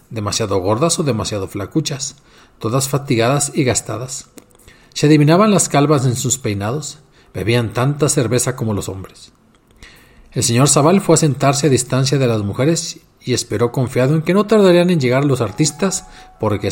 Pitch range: 115-160 Hz